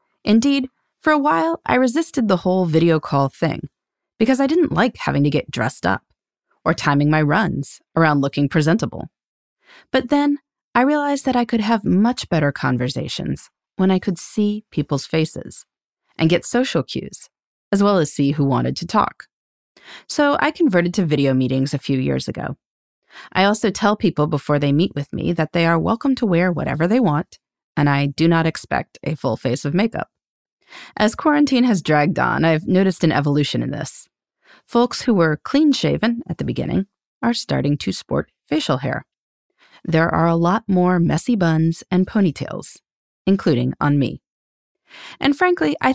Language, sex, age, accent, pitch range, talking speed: English, female, 30-49, American, 145-230 Hz, 175 wpm